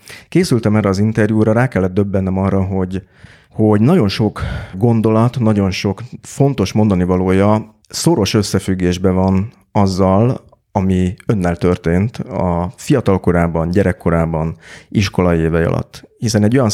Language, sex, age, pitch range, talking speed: Hungarian, male, 30-49, 90-110 Hz, 120 wpm